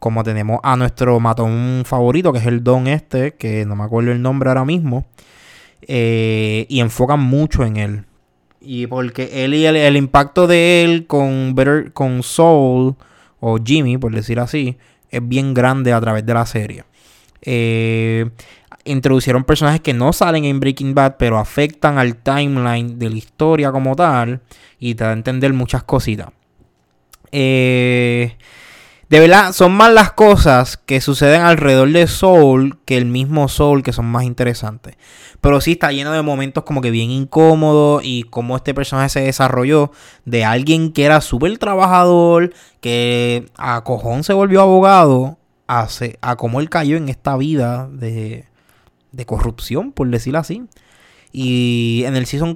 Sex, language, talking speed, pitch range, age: male, English, 160 wpm, 120-145 Hz, 20-39